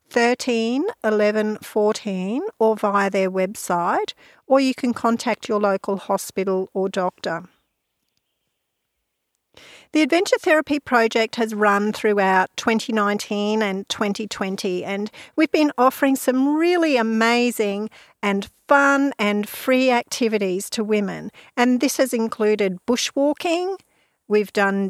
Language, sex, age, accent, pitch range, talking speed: English, female, 50-69, Australian, 205-260 Hz, 115 wpm